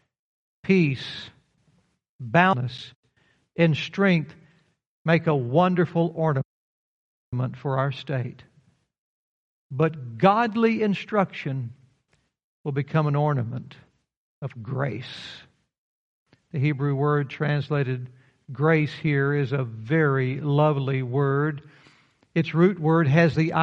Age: 60-79